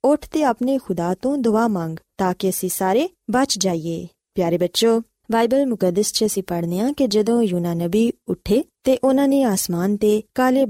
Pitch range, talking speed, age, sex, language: 185-245 Hz, 165 wpm, 20-39, female, Punjabi